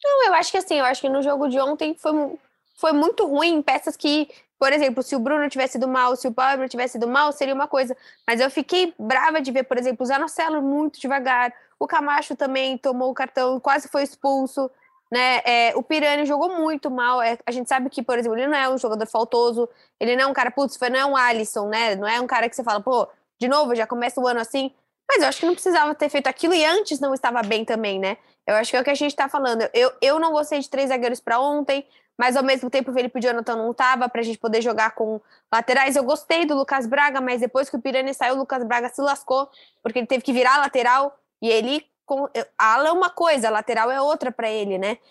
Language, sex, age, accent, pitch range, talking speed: Portuguese, female, 10-29, Brazilian, 245-290 Hz, 250 wpm